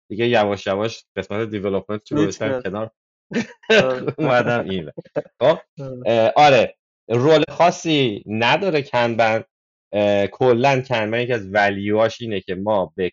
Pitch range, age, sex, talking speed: 100-125 Hz, 30-49, male, 100 wpm